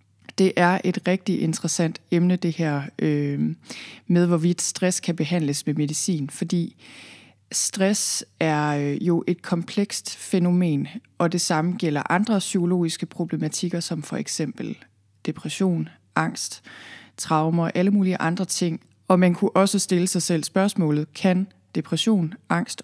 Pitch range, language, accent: 155-185 Hz, Danish, native